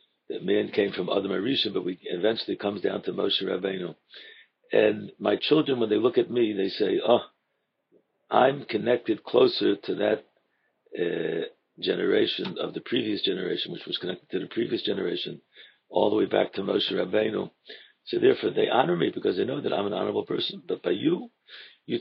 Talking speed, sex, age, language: 185 wpm, male, 60-79, English